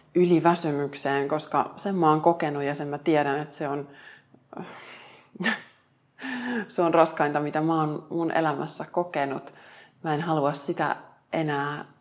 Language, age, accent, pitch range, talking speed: Finnish, 30-49, native, 150-180 Hz, 140 wpm